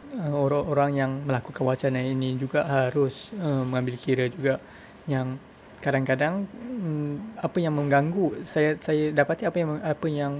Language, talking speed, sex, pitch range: English, 145 wpm, male, 135-150 Hz